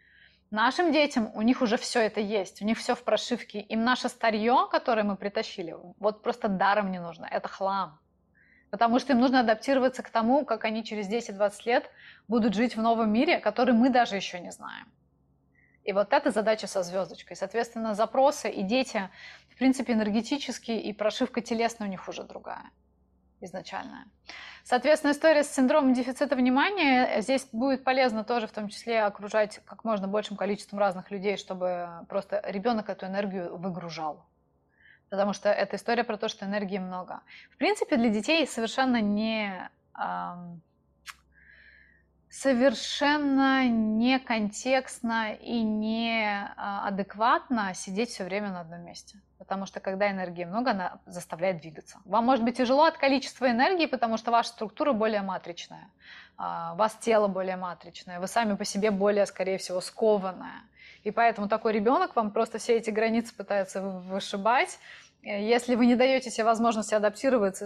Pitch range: 200-245 Hz